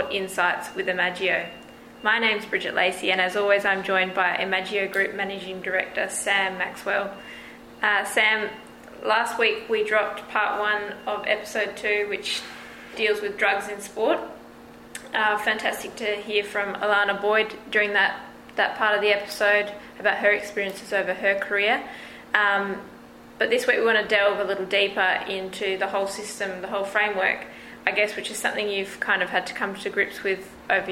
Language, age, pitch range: English, 20-39, 195-210 Hz